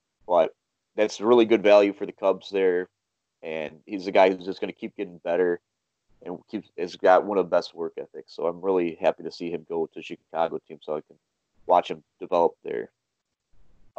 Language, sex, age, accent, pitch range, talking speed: English, male, 30-49, American, 90-110 Hz, 215 wpm